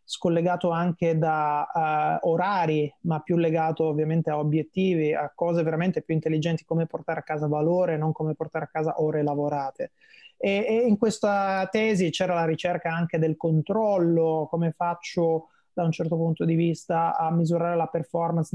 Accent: native